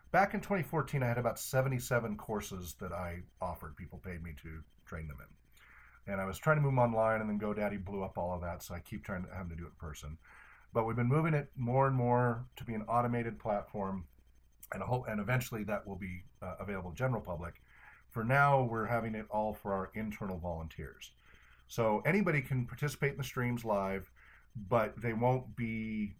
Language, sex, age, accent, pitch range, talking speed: English, male, 40-59, American, 100-125 Hz, 220 wpm